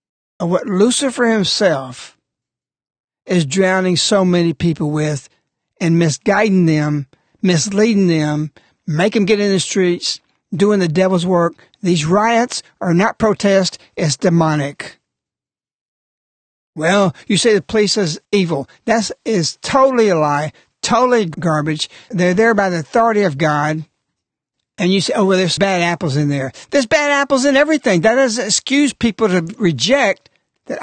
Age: 60-79